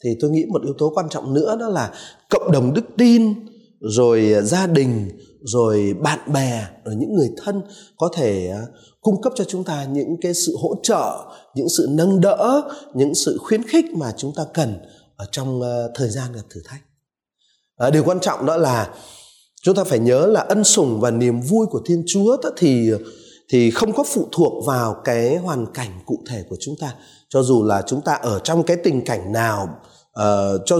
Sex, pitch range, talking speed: male, 120-190 Hz, 200 wpm